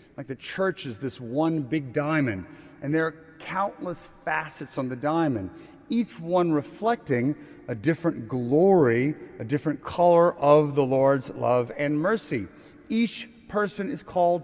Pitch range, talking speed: 145-190 Hz, 140 wpm